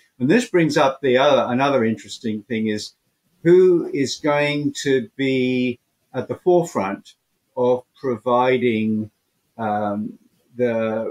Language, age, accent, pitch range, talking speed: English, 50-69, British, 110-130 Hz, 120 wpm